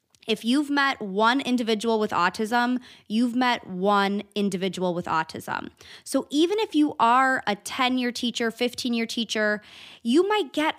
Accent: American